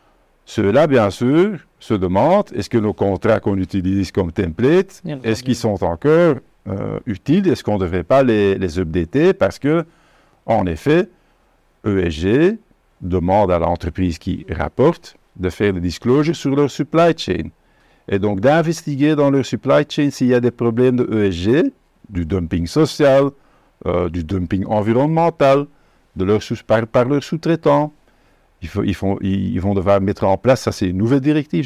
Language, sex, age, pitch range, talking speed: French, male, 50-69, 95-145 Hz, 160 wpm